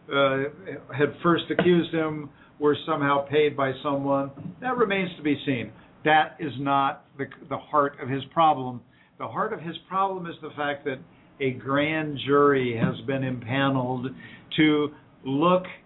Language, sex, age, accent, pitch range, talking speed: English, male, 50-69, American, 140-165 Hz, 155 wpm